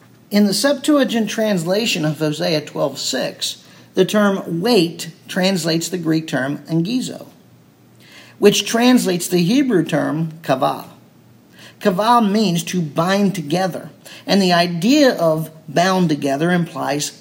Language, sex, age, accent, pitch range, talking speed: English, male, 50-69, American, 175-250 Hz, 115 wpm